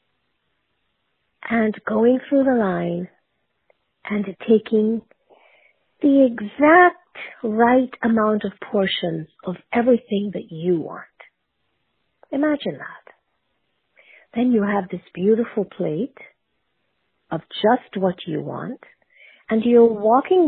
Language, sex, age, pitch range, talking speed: English, female, 50-69, 180-245 Hz, 100 wpm